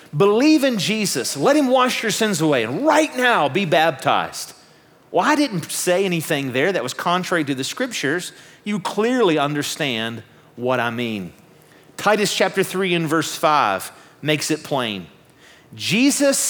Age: 40-59